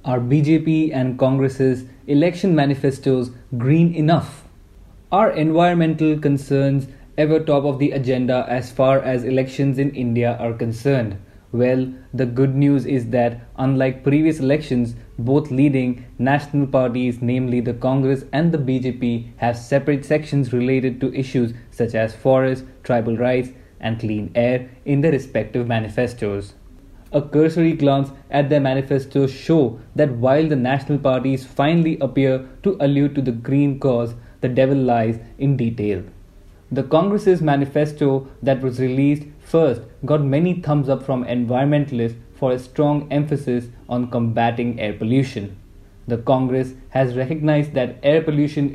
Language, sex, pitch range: English, male, 120-140 Hz